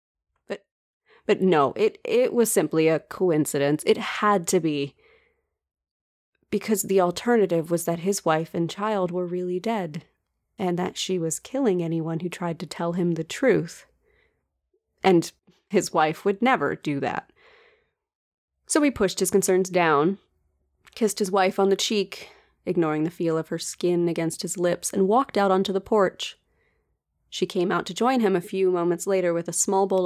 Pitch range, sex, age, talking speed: 165-200 Hz, female, 30-49, 170 wpm